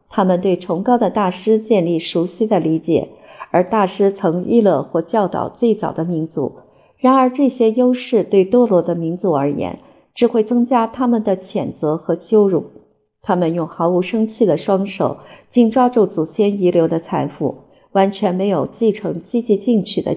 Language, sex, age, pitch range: Chinese, female, 50-69, 170-225 Hz